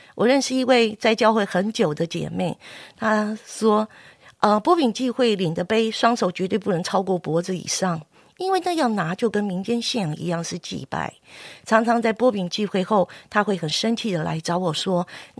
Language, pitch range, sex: Chinese, 180-235 Hz, female